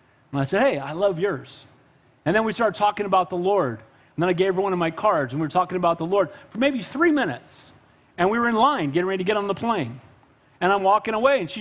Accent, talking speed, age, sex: American, 275 wpm, 40-59, male